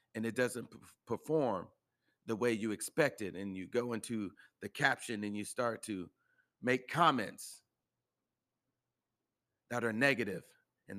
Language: English